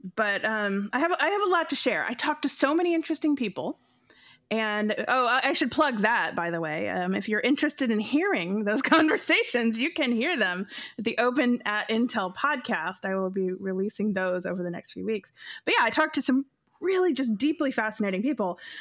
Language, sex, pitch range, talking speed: English, female, 210-275 Hz, 205 wpm